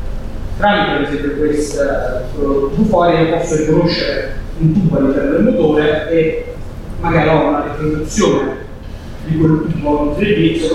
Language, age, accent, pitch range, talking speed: Italian, 30-49, native, 140-185 Hz, 140 wpm